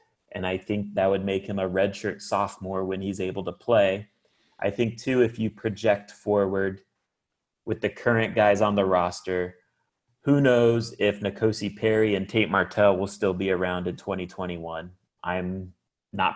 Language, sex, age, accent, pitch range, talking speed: English, male, 30-49, American, 95-110 Hz, 165 wpm